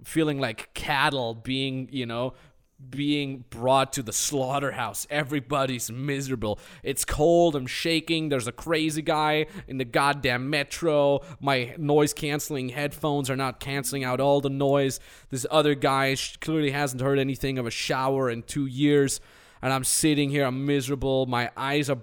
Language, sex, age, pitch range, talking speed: English, male, 20-39, 135-160 Hz, 155 wpm